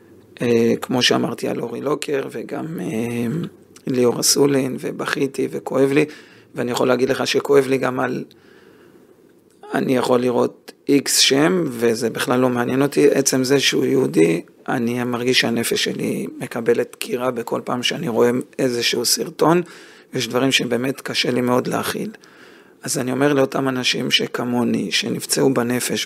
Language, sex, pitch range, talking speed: Hebrew, male, 125-145 Hz, 145 wpm